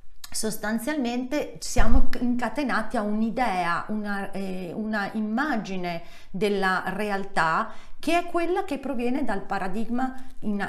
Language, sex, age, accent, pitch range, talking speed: Italian, female, 40-59, native, 185-255 Hz, 105 wpm